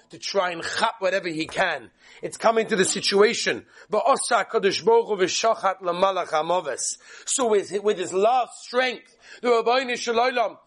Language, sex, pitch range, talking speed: English, male, 200-280 Hz, 120 wpm